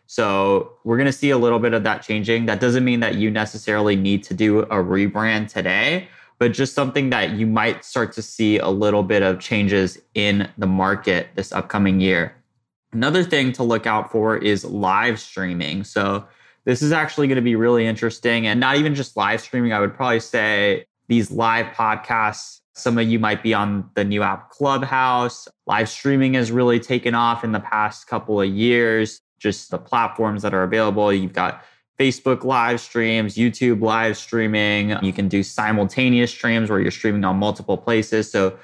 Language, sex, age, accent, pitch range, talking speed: English, male, 20-39, American, 100-120 Hz, 190 wpm